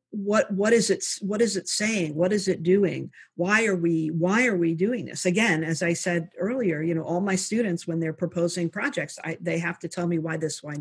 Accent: American